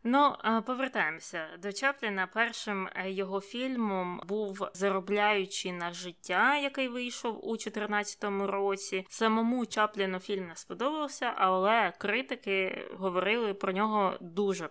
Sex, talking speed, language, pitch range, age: female, 110 wpm, Ukrainian, 190-230 Hz, 20-39